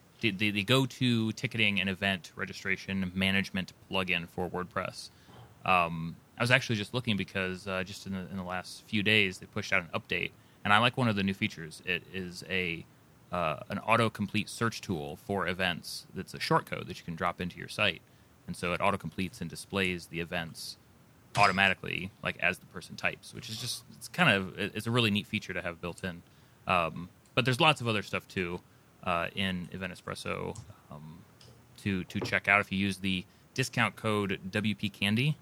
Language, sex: English, male